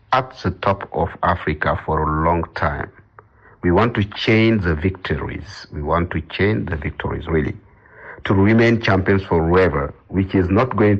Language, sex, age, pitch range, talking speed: English, male, 50-69, 85-105 Hz, 165 wpm